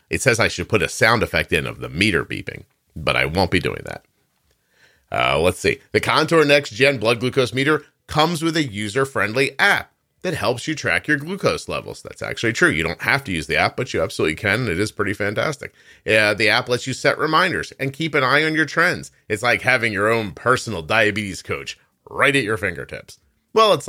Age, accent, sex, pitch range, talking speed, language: 40-59, American, male, 100-145 Hz, 215 wpm, English